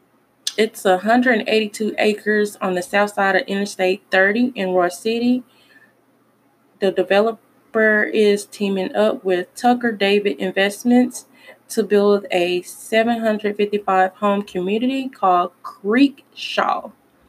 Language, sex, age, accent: English, female, 20-39, American